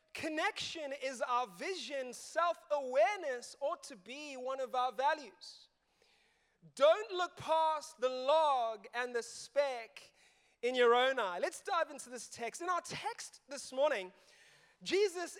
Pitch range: 255-340 Hz